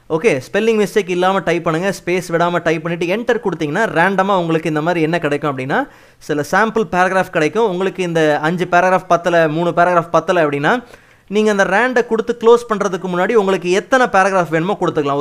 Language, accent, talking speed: Tamil, native, 175 wpm